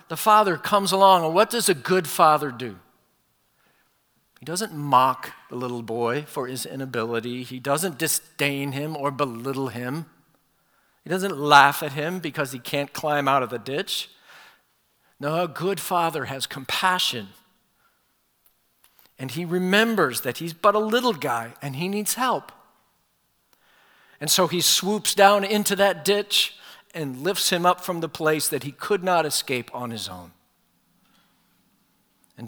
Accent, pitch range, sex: American, 135-180 Hz, male